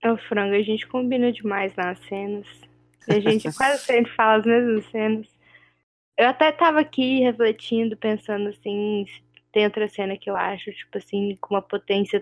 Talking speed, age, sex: 165 wpm, 10-29, female